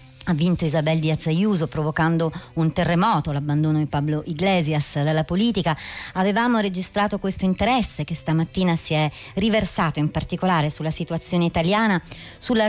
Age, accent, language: 30-49, native, Italian